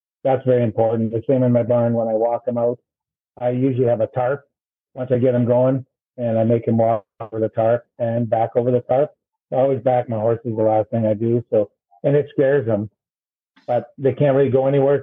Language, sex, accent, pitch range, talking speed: English, male, American, 115-130 Hz, 230 wpm